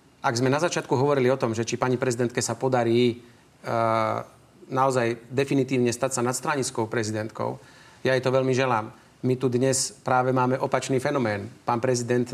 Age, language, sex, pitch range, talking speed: 40-59, Slovak, male, 120-140 Hz, 160 wpm